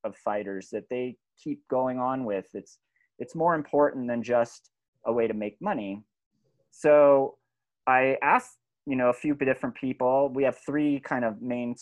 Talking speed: 175 wpm